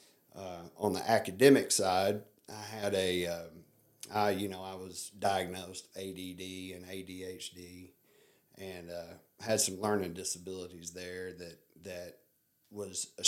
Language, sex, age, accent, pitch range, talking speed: English, male, 40-59, American, 90-105 Hz, 130 wpm